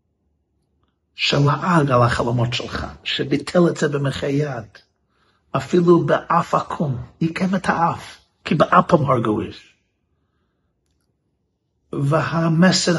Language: Hebrew